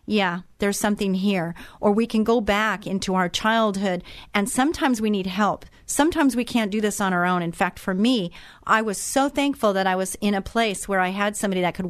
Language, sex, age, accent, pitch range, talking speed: English, female, 40-59, American, 180-215 Hz, 225 wpm